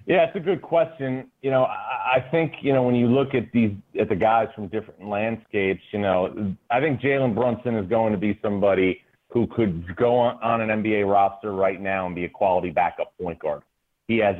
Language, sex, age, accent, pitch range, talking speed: English, male, 40-59, American, 95-120 Hz, 220 wpm